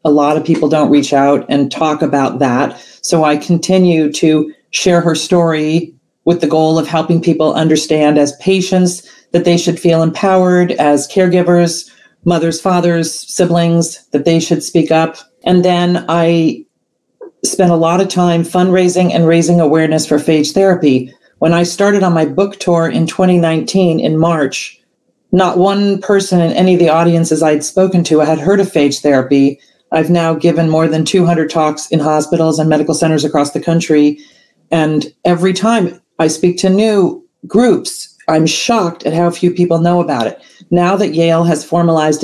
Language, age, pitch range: English, 40-59, 155-180 Hz